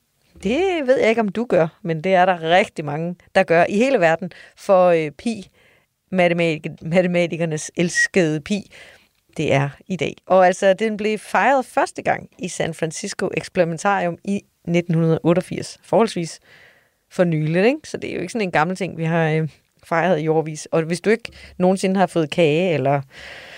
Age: 30-49